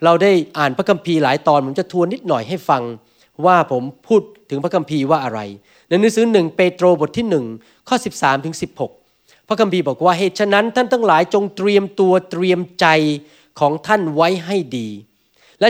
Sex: male